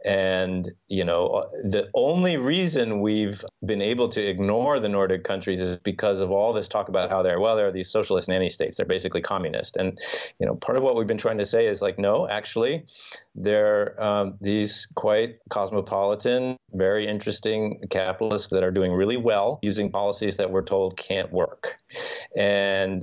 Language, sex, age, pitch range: English, male, 30-49, 95-125 Hz